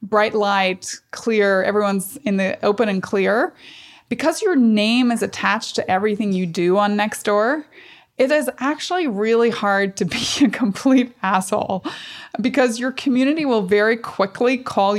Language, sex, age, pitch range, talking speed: English, female, 20-39, 200-240 Hz, 150 wpm